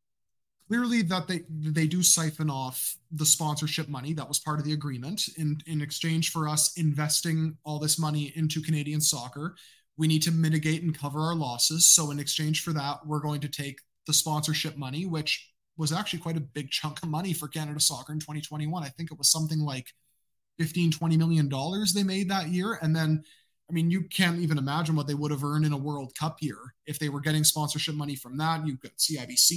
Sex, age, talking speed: male, 20-39, 215 wpm